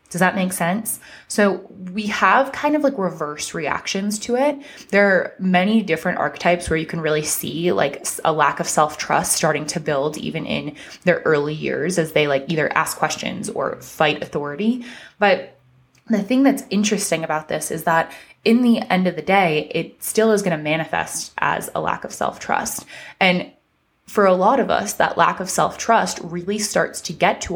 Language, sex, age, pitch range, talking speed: English, female, 20-39, 165-215 Hz, 190 wpm